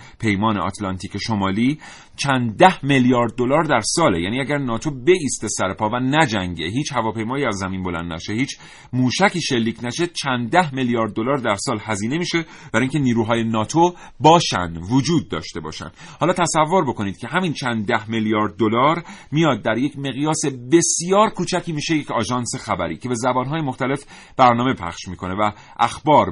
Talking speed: 160 wpm